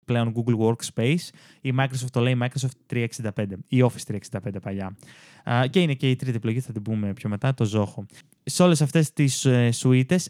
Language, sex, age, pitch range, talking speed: Greek, male, 20-39, 115-135 Hz, 180 wpm